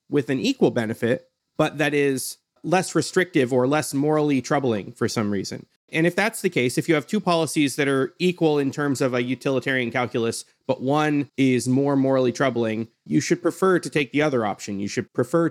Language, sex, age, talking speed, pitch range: English, male, 30-49, 200 wpm, 110-150 Hz